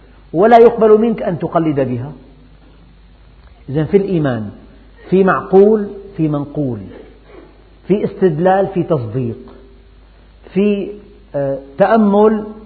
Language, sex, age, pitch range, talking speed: Arabic, male, 50-69, 130-190 Hz, 85 wpm